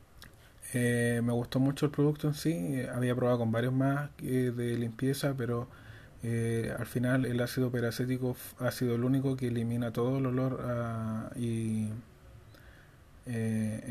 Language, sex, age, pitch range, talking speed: Spanish, male, 20-39, 115-130 Hz, 150 wpm